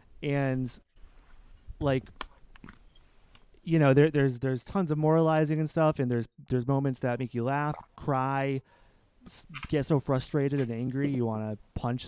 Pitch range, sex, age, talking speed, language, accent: 120-150 Hz, male, 30-49, 155 wpm, English, American